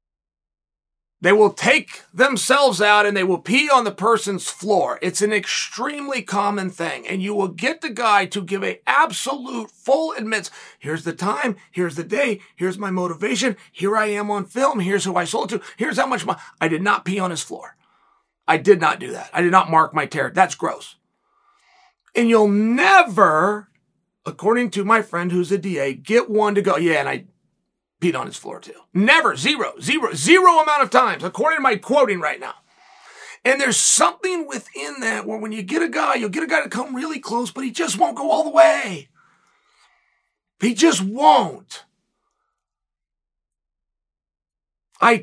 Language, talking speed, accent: English, 185 wpm, American